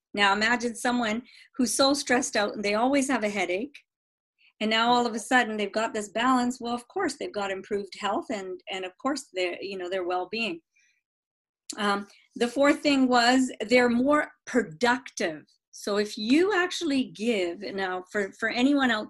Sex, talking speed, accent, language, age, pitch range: female, 180 wpm, American, English, 40-59, 195-255 Hz